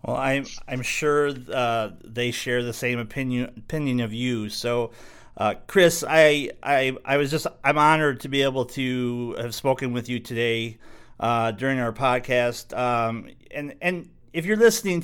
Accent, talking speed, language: American, 170 wpm, English